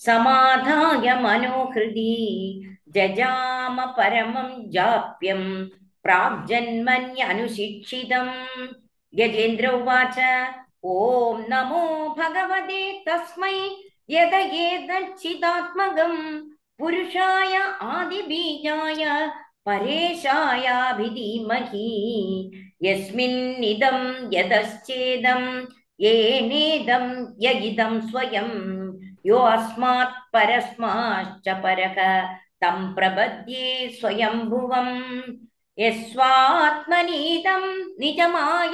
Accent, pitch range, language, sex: native, 225-325 Hz, Tamil, male